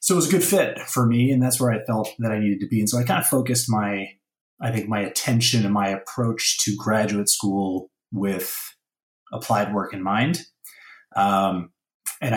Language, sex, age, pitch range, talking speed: English, male, 30-49, 100-120 Hz, 205 wpm